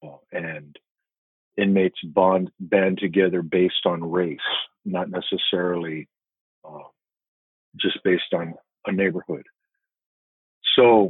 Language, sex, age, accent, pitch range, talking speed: English, male, 50-69, American, 90-105 Hz, 95 wpm